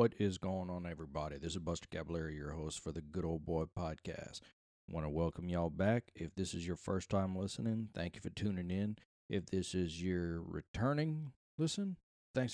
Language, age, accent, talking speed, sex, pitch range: English, 40-59, American, 200 wpm, male, 85-105 Hz